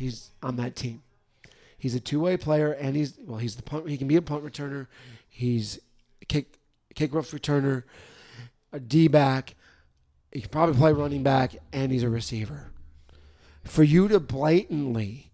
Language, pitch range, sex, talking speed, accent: English, 120-150 Hz, male, 170 wpm, American